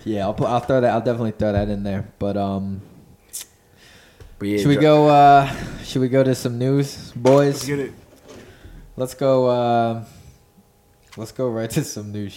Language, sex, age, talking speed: English, male, 20-39, 165 wpm